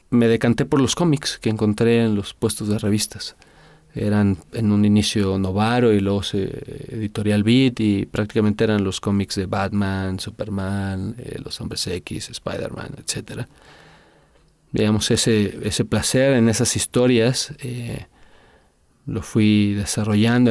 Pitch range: 100-115 Hz